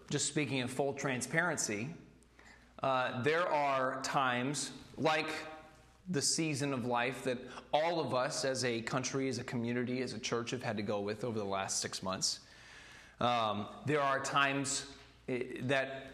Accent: American